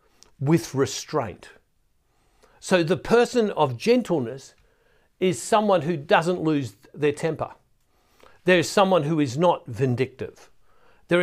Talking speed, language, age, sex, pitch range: 120 wpm, English, 60-79, male, 140-185 Hz